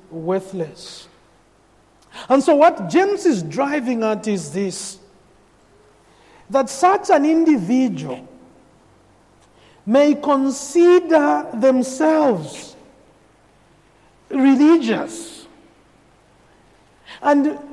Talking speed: 65 wpm